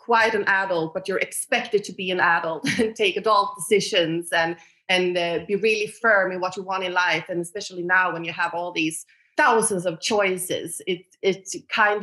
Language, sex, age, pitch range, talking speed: English, female, 30-49, 175-200 Hz, 200 wpm